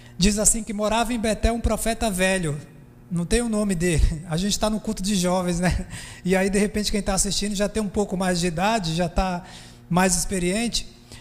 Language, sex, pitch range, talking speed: Portuguese, male, 180-225 Hz, 215 wpm